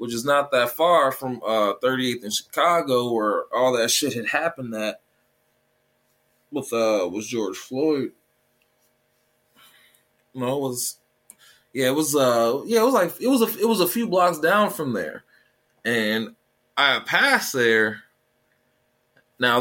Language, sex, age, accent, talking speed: English, male, 20-39, American, 155 wpm